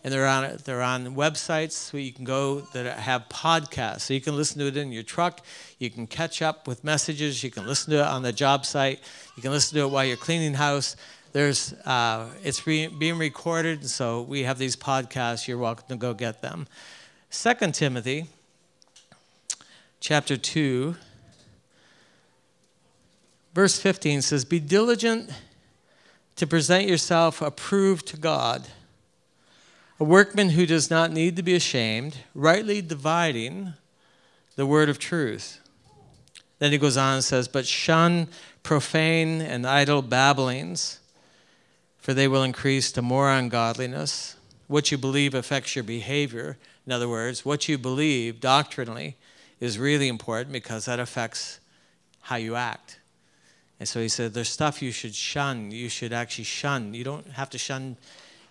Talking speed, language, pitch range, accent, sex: 160 wpm, English, 125-155 Hz, American, male